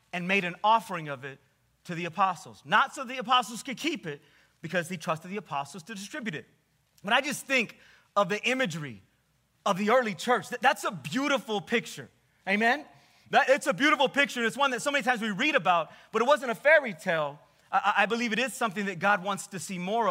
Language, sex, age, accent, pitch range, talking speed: English, male, 30-49, American, 180-255 Hz, 210 wpm